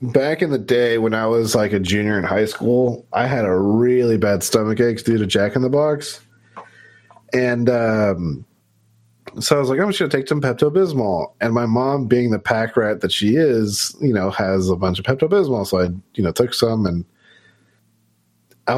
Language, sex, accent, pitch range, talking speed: English, male, American, 105-150 Hz, 205 wpm